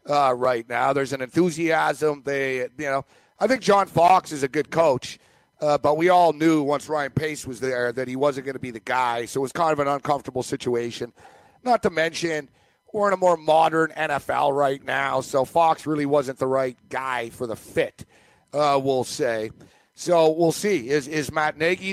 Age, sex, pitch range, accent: 50-69, male, 140-175 Hz, American